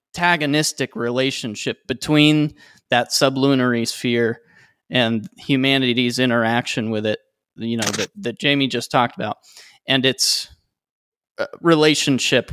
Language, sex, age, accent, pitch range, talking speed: English, male, 20-39, American, 115-140 Hz, 105 wpm